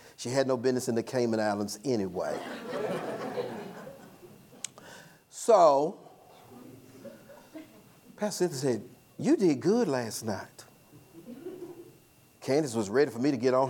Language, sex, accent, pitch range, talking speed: English, male, American, 125-165 Hz, 115 wpm